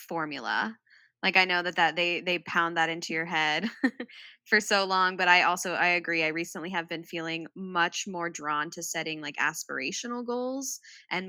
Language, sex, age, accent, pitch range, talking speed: English, female, 10-29, American, 165-205 Hz, 185 wpm